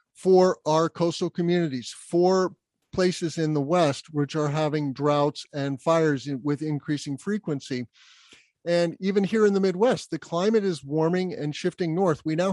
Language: English